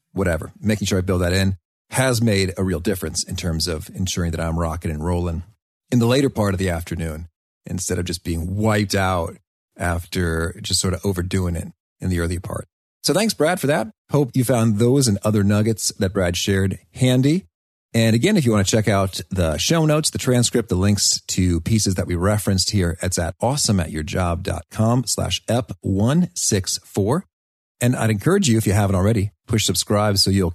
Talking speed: 195 wpm